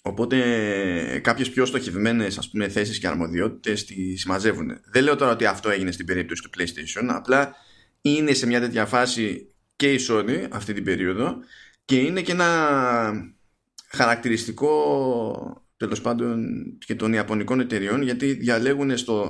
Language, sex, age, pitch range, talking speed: Greek, male, 20-39, 105-135 Hz, 140 wpm